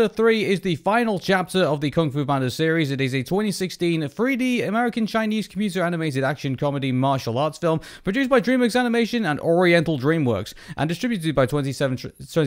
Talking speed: 175 wpm